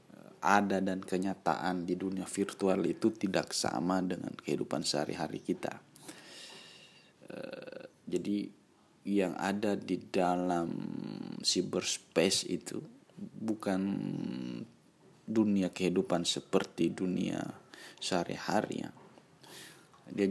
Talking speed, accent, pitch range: 85 wpm, native, 95-105 Hz